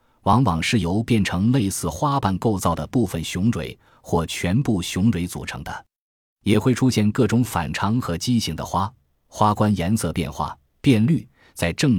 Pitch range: 85-110 Hz